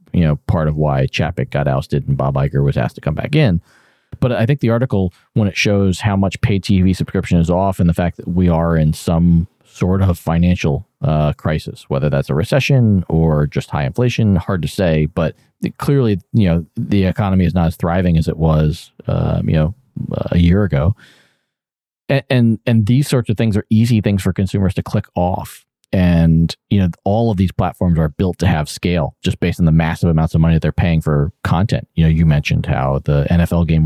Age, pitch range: 30-49, 80-100 Hz